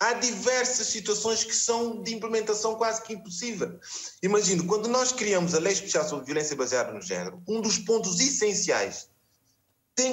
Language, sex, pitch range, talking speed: Portuguese, male, 165-220 Hz, 160 wpm